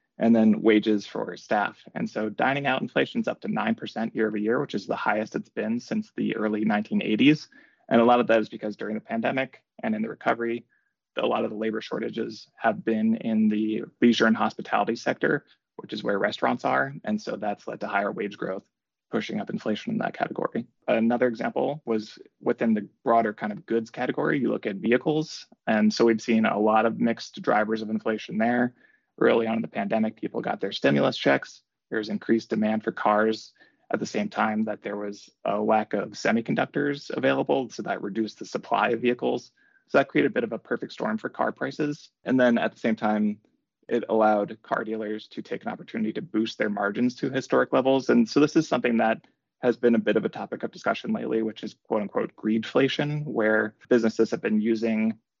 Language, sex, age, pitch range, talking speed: English, male, 20-39, 110-125 Hz, 210 wpm